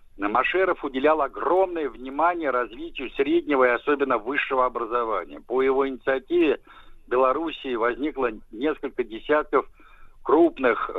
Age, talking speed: 60-79, 105 wpm